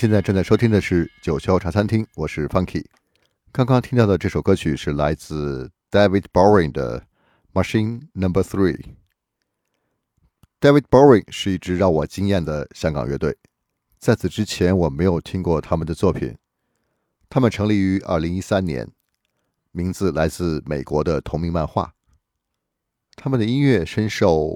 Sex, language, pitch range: male, Chinese, 80-105 Hz